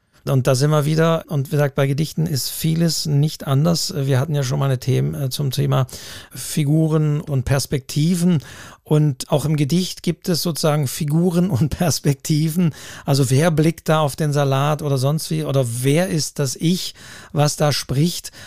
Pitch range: 135-165 Hz